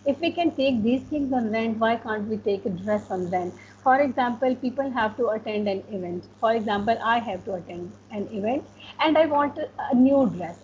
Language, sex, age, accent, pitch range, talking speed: English, female, 50-69, Indian, 200-260 Hz, 215 wpm